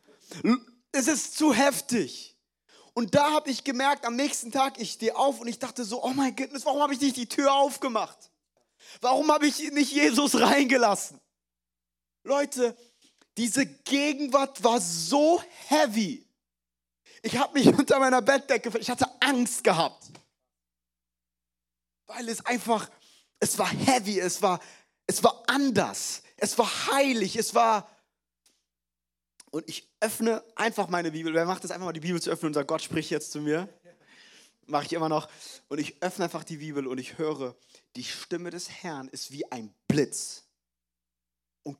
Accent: German